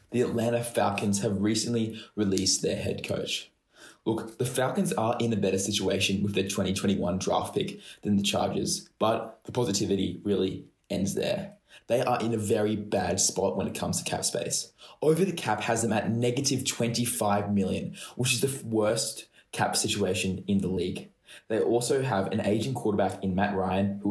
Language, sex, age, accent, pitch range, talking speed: English, male, 20-39, Australian, 100-120 Hz, 175 wpm